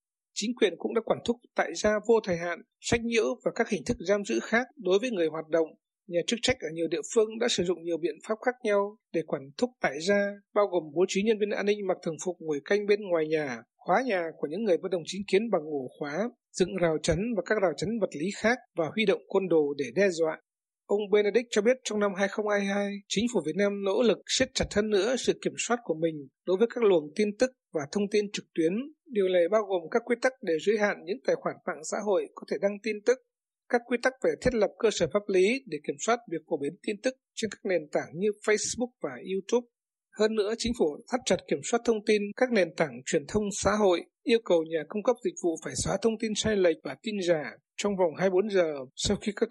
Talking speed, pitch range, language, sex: 255 wpm, 170-225 Hz, Vietnamese, male